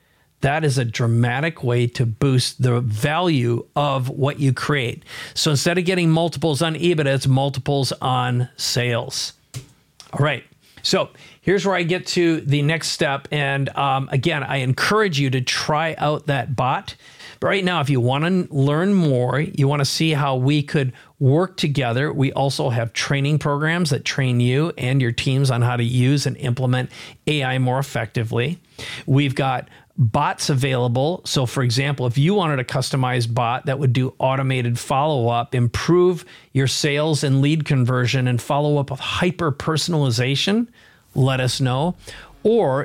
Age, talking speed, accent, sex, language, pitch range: 50-69, 165 wpm, American, male, English, 130-155 Hz